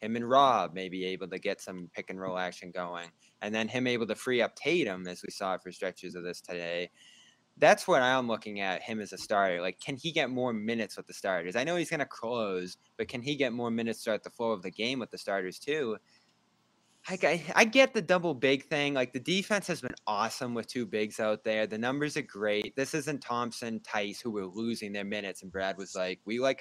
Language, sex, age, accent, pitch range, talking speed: English, male, 20-39, American, 100-125 Hz, 245 wpm